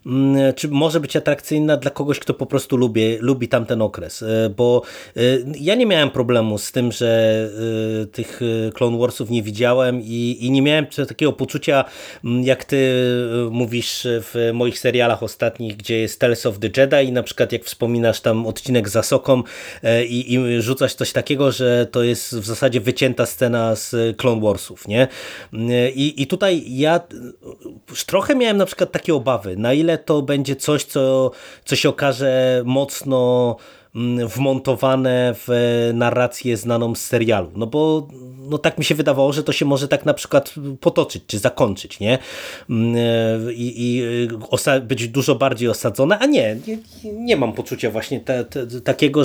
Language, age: Polish, 30-49